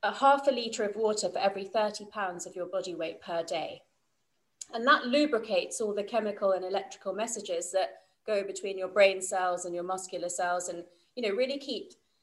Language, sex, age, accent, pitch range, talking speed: English, female, 30-49, British, 190-250 Hz, 195 wpm